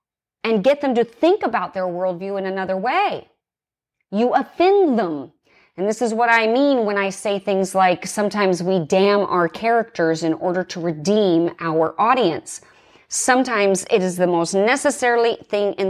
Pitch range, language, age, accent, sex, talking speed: 185-245 Hz, English, 30-49, American, female, 165 wpm